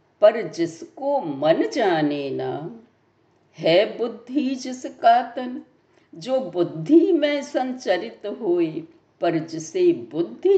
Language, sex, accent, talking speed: Hindi, female, native, 95 wpm